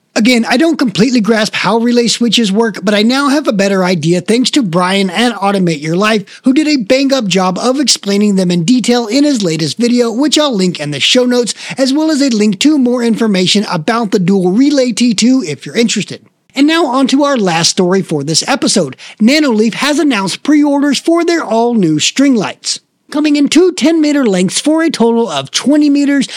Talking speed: 205 wpm